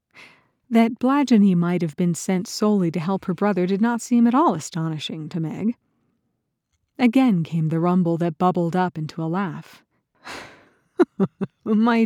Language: English